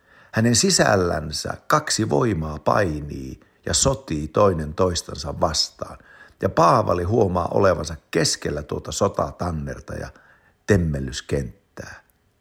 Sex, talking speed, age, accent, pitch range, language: male, 90 wpm, 60-79, Finnish, 80-120 Hz, Turkish